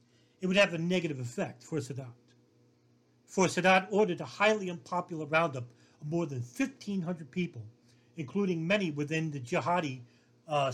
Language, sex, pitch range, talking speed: English, male, 120-180 Hz, 145 wpm